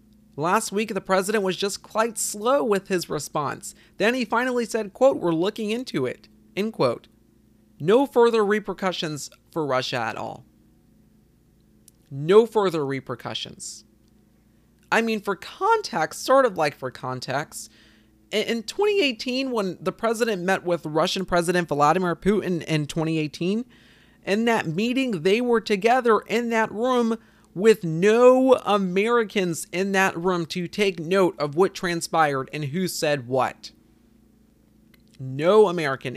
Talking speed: 135 wpm